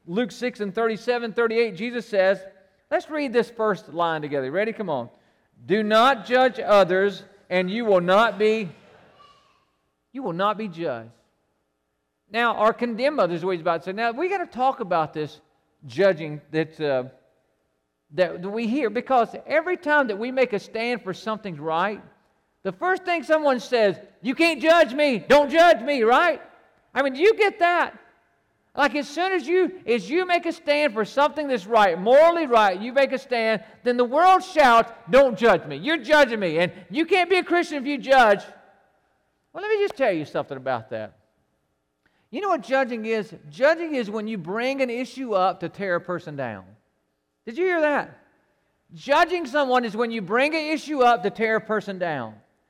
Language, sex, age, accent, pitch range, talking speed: English, male, 50-69, American, 185-285 Hz, 190 wpm